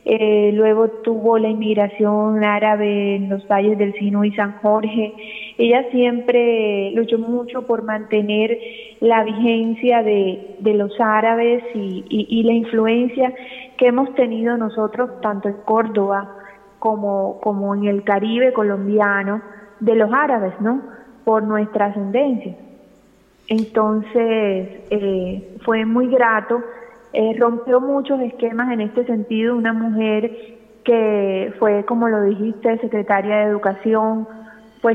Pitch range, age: 205-230 Hz, 20-39